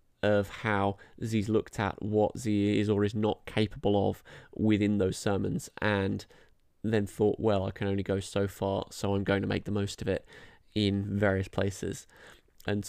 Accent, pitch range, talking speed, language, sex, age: British, 100-110 Hz, 180 wpm, English, male, 20-39